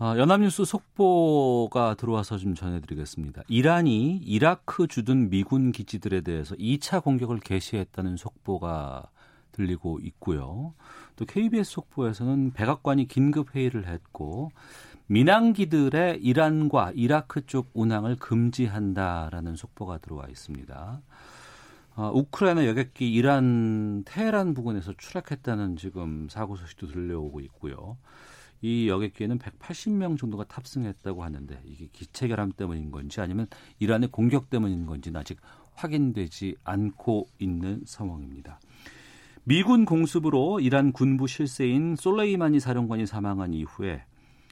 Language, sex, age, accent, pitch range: Korean, male, 40-59, native, 95-135 Hz